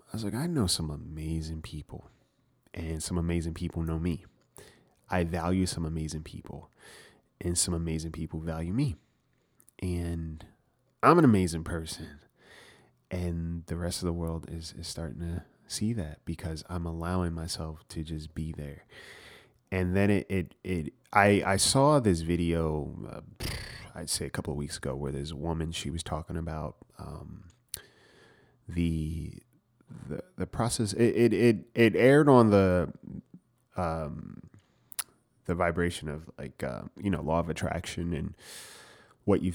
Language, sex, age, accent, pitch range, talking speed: English, male, 30-49, American, 80-100 Hz, 155 wpm